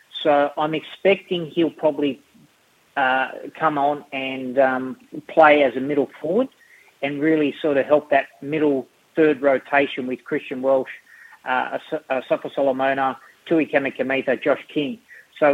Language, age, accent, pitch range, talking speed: English, 30-49, Australian, 130-155 Hz, 130 wpm